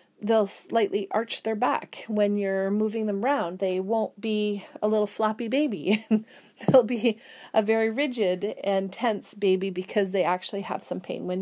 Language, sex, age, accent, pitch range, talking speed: English, female, 30-49, American, 205-245 Hz, 170 wpm